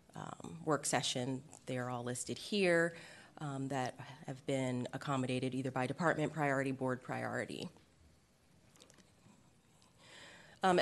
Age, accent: 30-49, American